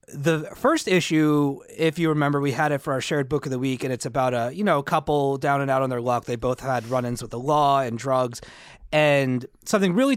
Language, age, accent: English, 30-49, American